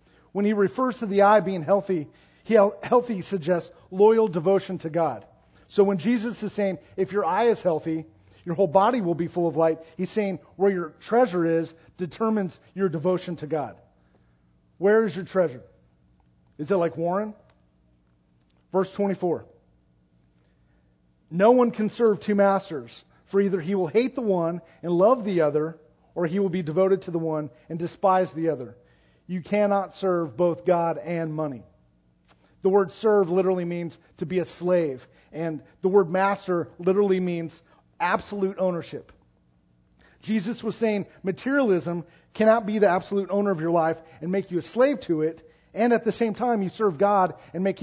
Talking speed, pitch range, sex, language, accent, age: 170 wpm, 155-200 Hz, male, English, American, 40-59